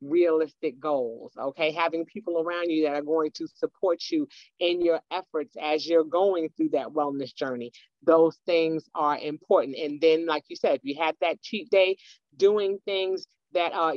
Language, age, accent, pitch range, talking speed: English, 30-49, American, 155-180 Hz, 180 wpm